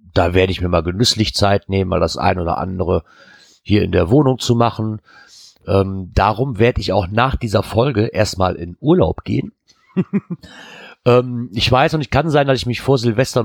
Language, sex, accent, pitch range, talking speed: German, male, German, 95-130 Hz, 190 wpm